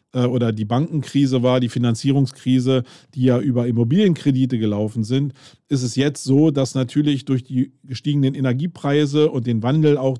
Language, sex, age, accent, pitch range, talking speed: German, male, 40-59, German, 120-140 Hz, 155 wpm